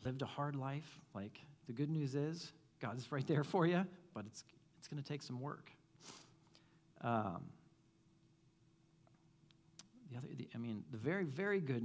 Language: English